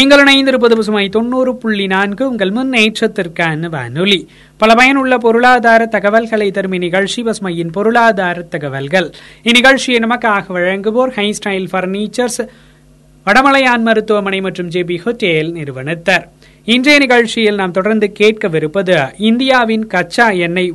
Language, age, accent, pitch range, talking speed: Tamil, 20-39, native, 180-235 Hz, 55 wpm